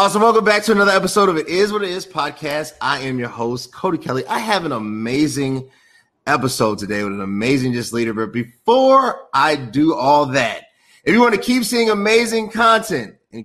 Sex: male